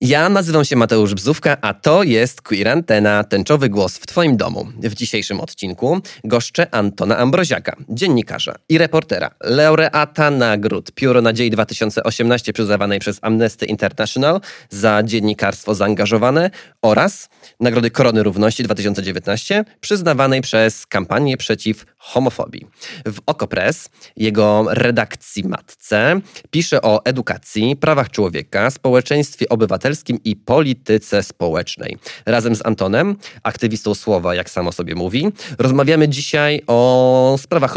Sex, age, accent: male, 20-39, native